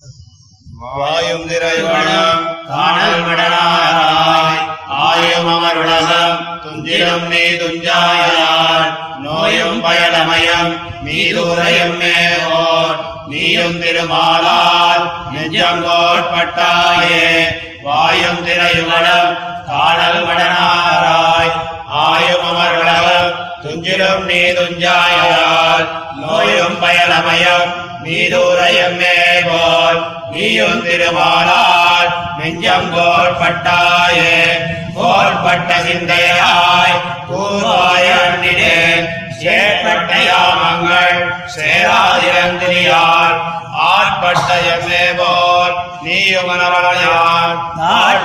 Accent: native